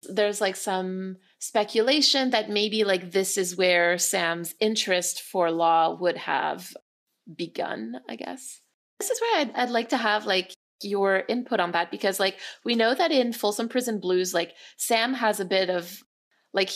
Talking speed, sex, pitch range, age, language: 170 wpm, female, 180-225 Hz, 30-49, English